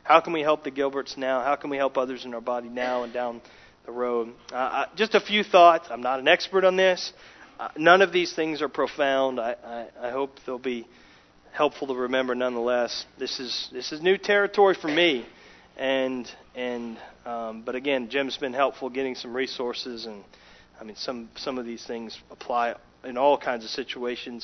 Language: English